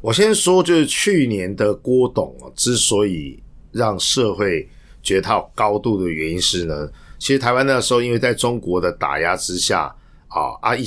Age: 50-69